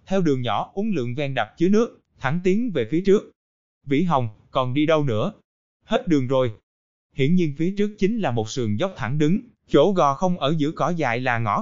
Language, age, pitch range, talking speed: Vietnamese, 20-39, 130-180 Hz, 220 wpm